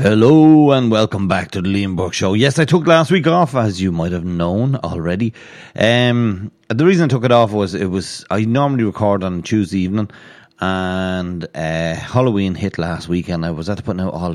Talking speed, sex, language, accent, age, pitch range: 215 wpm, male, English, Irish, 30-49, 90-120 Hz